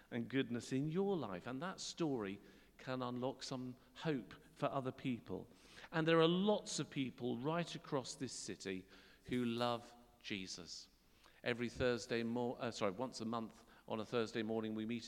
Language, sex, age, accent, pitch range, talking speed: English, male, 50-69, British, 115-150 Hz, 165 wpm